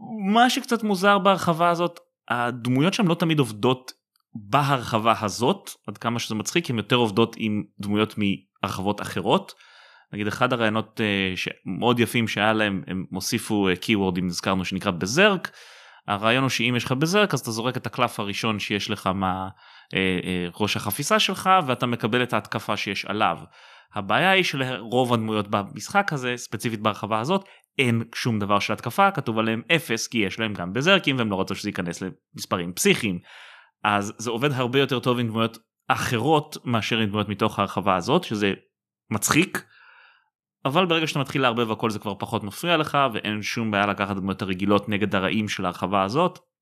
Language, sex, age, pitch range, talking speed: Hebrew, male, 20-39, 105-135 Hz, 170 wpm